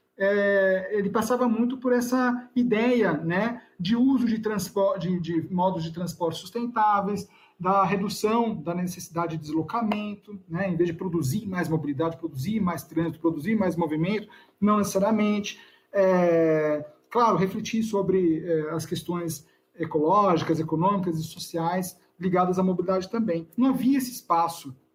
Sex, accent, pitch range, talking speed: male, Brazilian, 170-230 Hz, 130 wpm